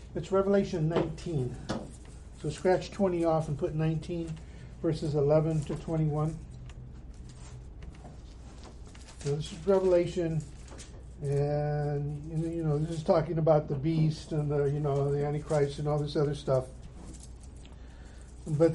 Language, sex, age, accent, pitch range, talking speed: English, male, 50-69, American, 135-170 Hz, 130 wpm